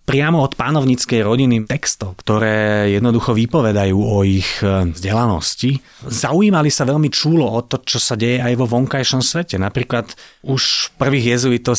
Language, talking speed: Slovak, 145 wpm